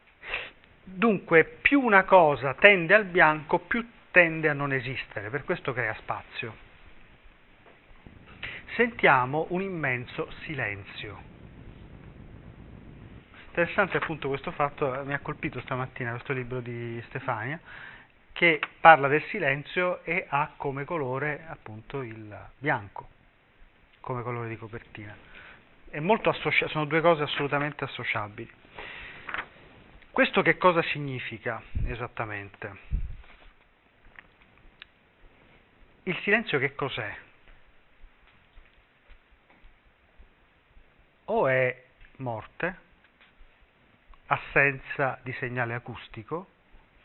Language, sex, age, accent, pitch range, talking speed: Italian, male, 30-49, native, 125-165 Hz, 85 wpm